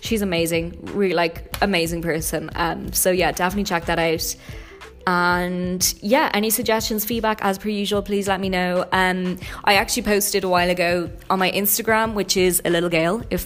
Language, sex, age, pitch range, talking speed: English, female, 20-39, 175-205 Hz, 185 wpm